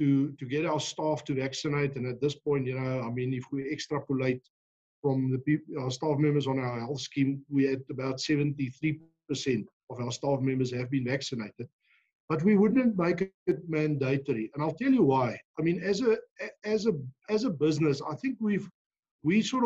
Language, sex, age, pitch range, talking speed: English, male, 60-79, 140-180 Hz, 195 wpm